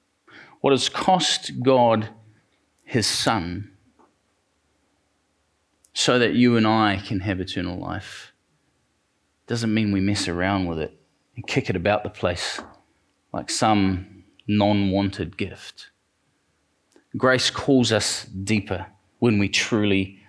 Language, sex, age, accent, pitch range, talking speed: English, male, 30-49, Australian, 100-125 Hz, 115 wpm